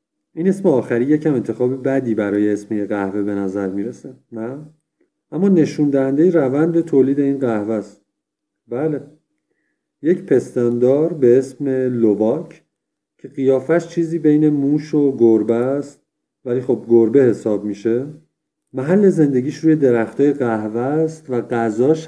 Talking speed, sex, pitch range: 130 wpm, male, 115-145 Hz